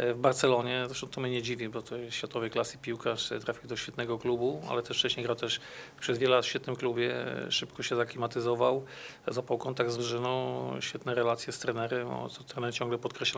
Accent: native